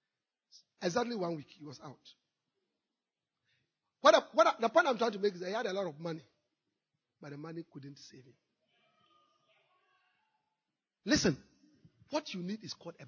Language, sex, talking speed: English, male, 165 wpm